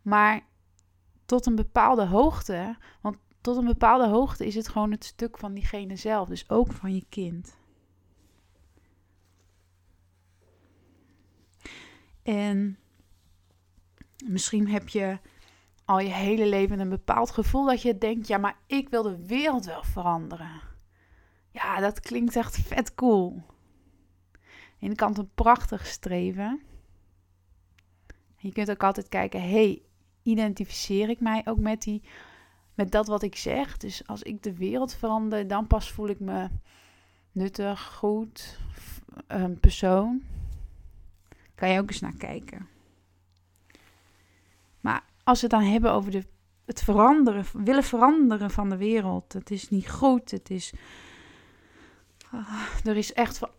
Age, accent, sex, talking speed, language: 20-39, Dutch, female, 135 wpm, Dutch